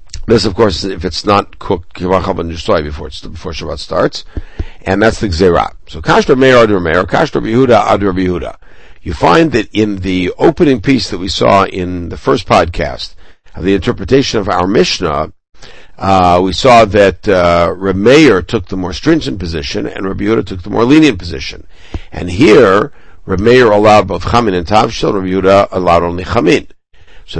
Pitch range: 90-110 Hz